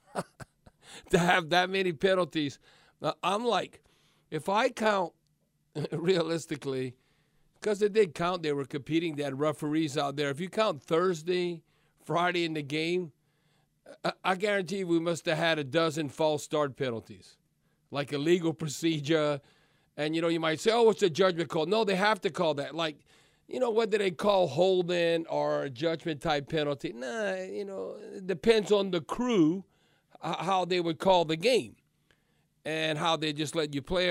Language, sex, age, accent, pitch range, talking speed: English, male, 50-69, American, 150-185 Hz, 170 wpm